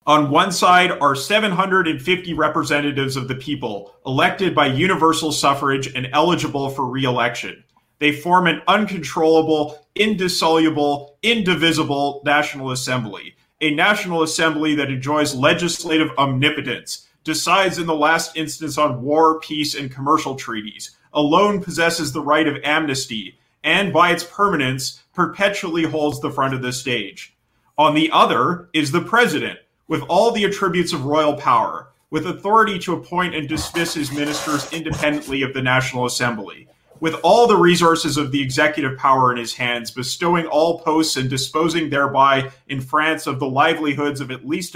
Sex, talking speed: male, 150 wpm